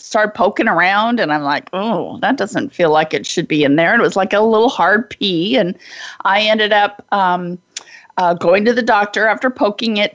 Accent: American